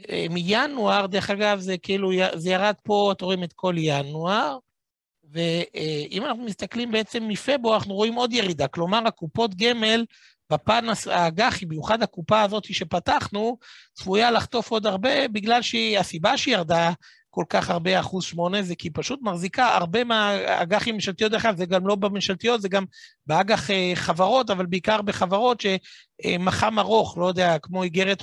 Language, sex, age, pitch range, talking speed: Hebrew, male, 60-79, 175-215 Hz, 150 wpm